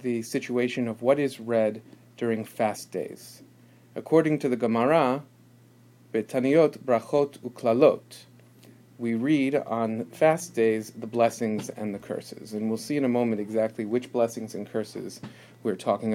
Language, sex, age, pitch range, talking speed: English, male, 40-59, 110-125 Hz, 135 wpm